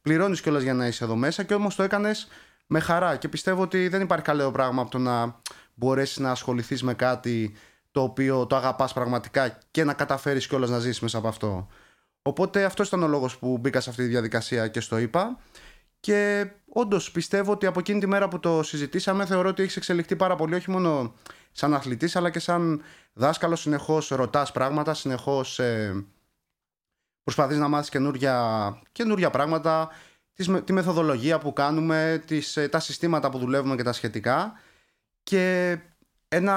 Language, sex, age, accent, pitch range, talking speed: Greek, male, 20-39, native, 135-180 Hz, 175 wpm